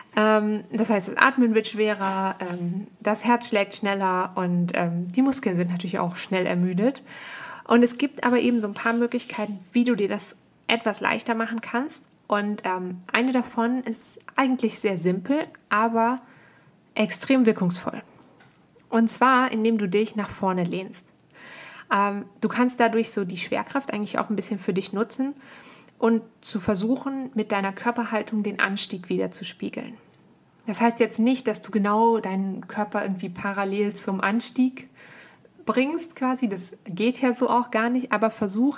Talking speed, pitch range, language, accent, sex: 155 wpm, 200-235 Hz, German, German, female